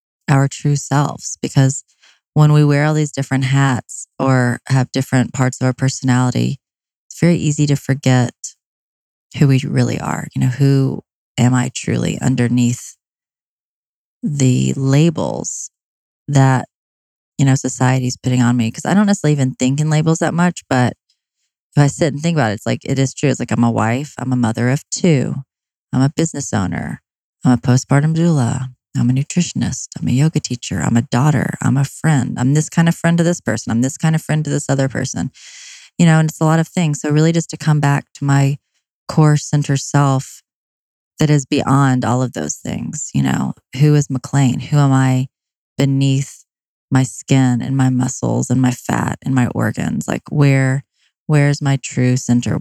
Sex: female